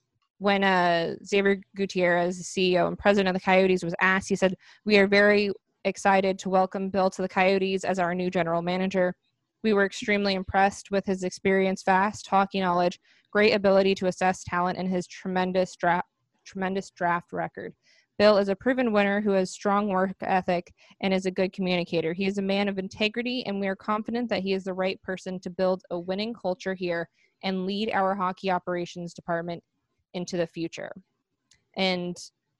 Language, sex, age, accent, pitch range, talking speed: English, female, 20-39, American, 180-200 Hz, 180 wpm